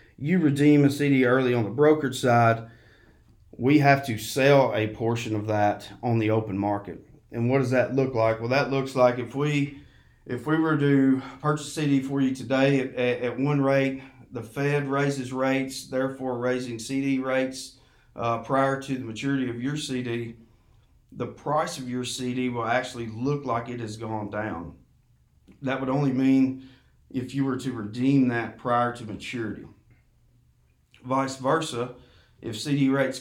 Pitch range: 115-135 Hz